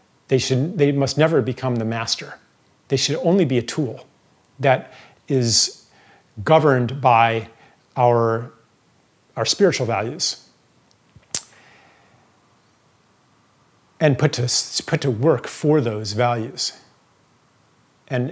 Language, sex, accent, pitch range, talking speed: English, male, American, 120-155 Hz, 100 wpm